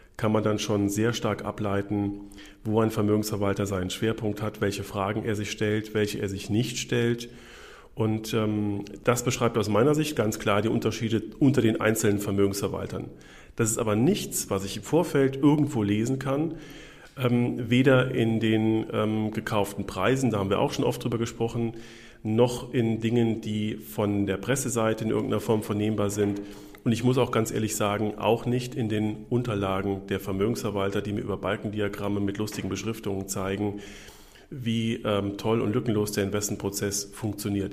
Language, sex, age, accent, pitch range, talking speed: German, male, 40-59, German, 100-115 Hz, 170 wpm